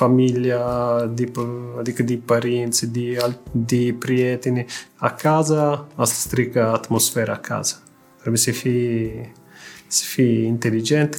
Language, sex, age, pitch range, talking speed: Romanian, male, 30-49, 120-140 Hz, 90 wpm